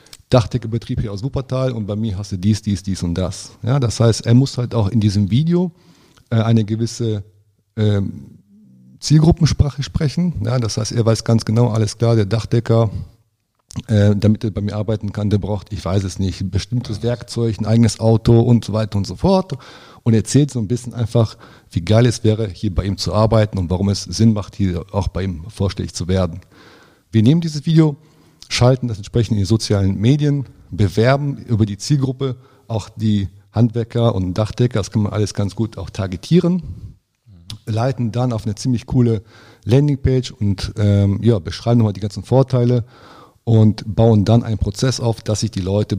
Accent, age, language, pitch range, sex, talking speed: German, 40-59, German, 100-120 Hz, male, 185 wpm